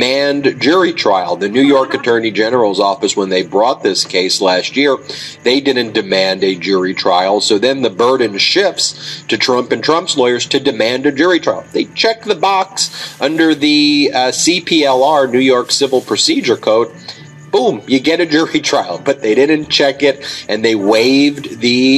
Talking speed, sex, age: 175 wpm, male, 40-59